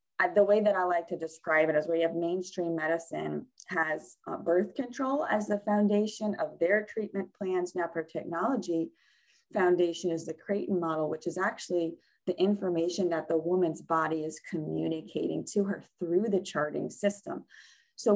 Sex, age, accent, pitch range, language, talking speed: female, 20-39, American, 160-205 Hz, English, 170 wpm